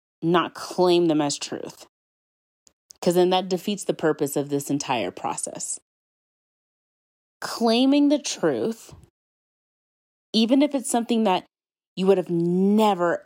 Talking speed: 120 wpm